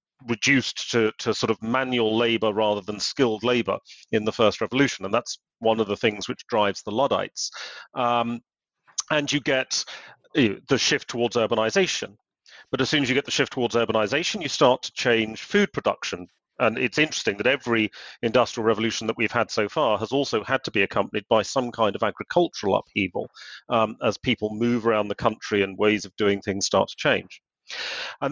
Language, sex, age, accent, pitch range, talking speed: English, male, 40-59, British, 110-140 Hz, 190 wpm